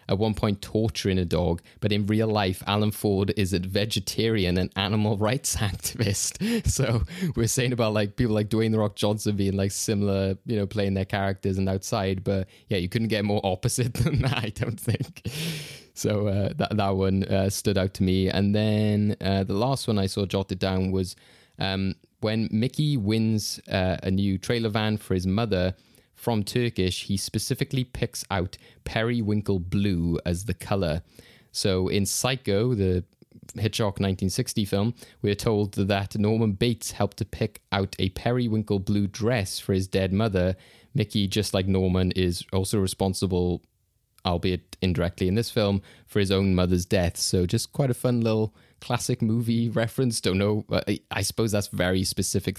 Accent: British